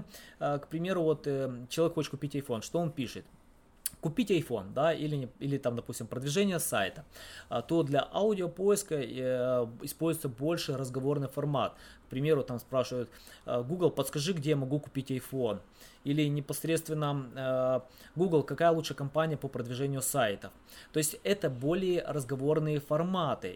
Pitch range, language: 130-165 Hz, Russian